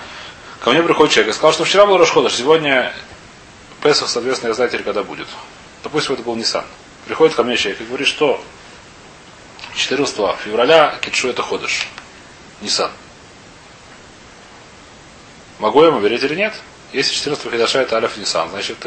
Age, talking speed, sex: 30-49, 150 wpm, male